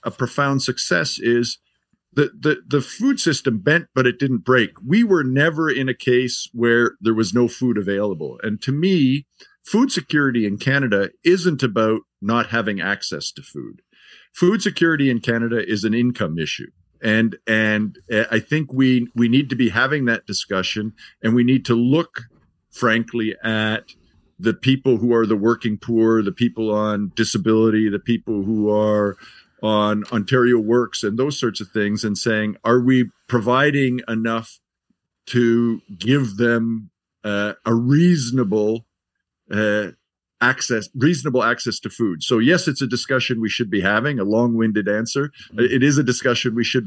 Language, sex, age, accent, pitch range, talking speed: English, male, 50-69, American, 110-130 Hz, 160 wpm